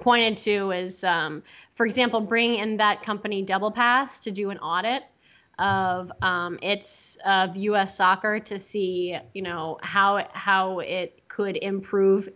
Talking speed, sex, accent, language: 150 wpm, female, American, English